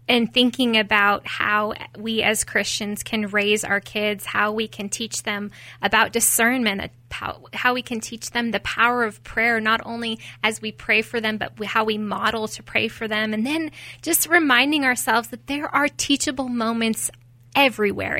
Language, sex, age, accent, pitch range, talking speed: English, female, 20-39, American, 210-255 Hz, 175 wpm